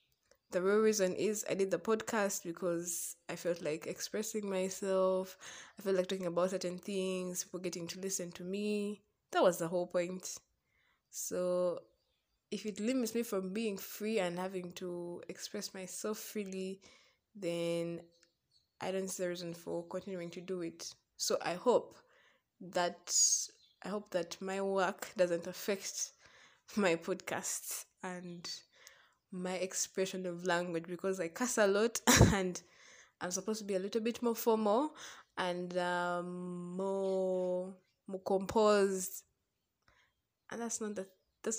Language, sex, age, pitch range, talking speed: English, female, 20-39, 175-205 Hz, 145 wpm